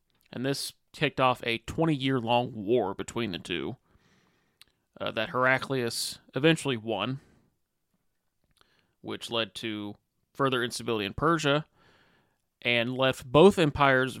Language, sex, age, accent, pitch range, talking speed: English, male, 30-49, American, 110-135 Hz, 110 wpm